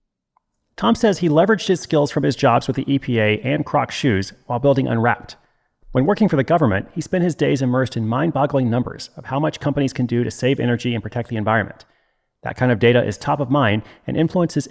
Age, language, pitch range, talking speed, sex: 30-49, English, 115-145 Hz, 220 wpm, male